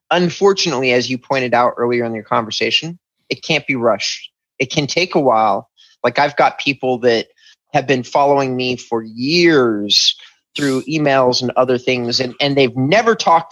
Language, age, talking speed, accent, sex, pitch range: English, 30-49, 175 wpm, American, male, 125-155 Hz